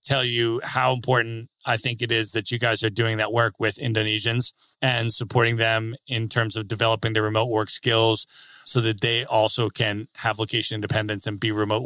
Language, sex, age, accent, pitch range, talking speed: English, male, 30-49, American, 110-130 Hz, 195 wpm